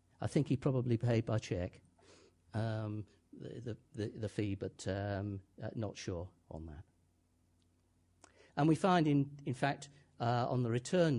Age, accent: 50-69, British